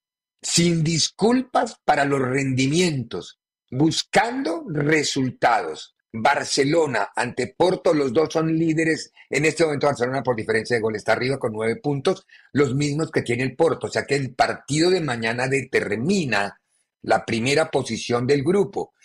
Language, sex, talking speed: Spanish, male, 145 wpm